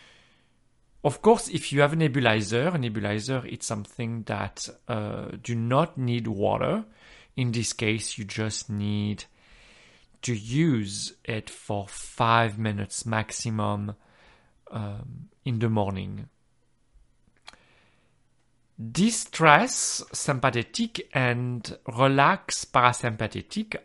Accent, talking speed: French, 100 wpm